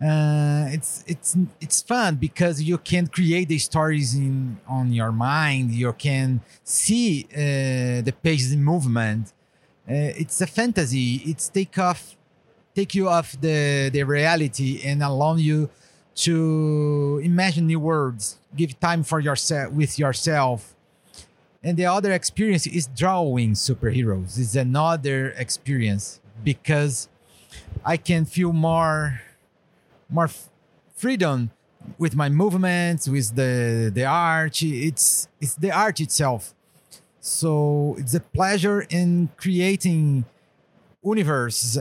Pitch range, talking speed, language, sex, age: 135-170 Hz, 125 wpm, French, male, 40-59